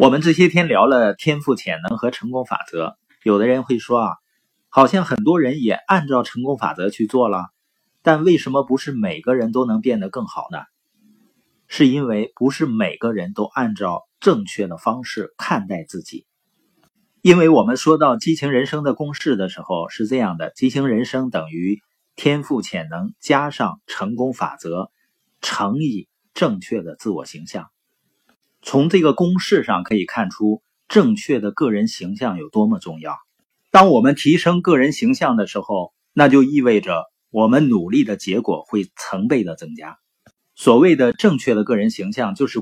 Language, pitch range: Chinese, 125-205 Hz